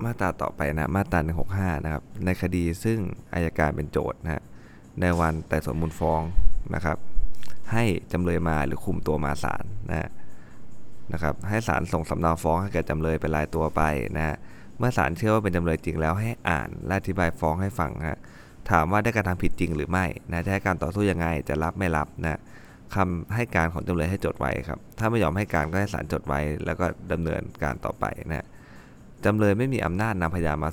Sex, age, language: male, 20-39, Thai